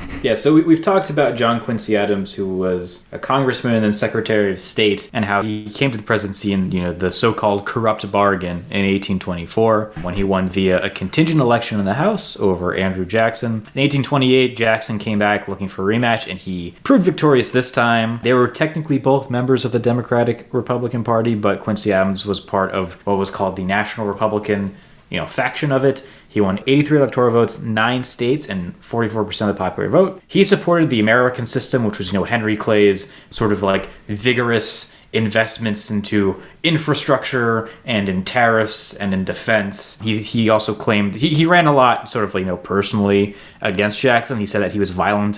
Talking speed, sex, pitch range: 195 wpm, male, 100-125 Hz